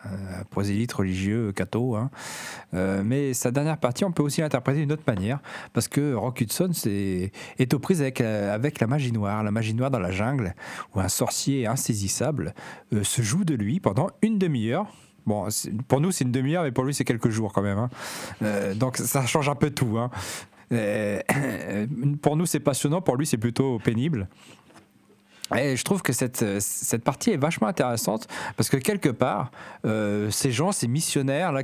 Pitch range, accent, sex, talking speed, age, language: 110-145 Hz, French, male, 190 wpm, 40-59, French